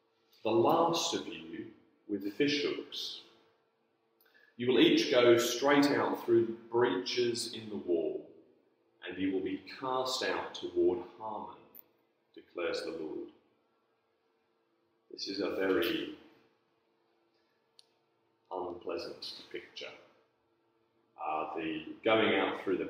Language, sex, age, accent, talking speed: English, male, 30-49, British, 110 wpm